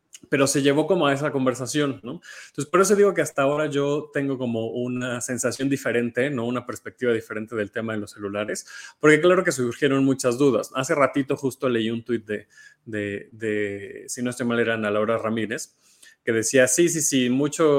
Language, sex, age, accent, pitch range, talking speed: Spanish, male, 20-39, Mexican, 115-140 Hz, 200 wpm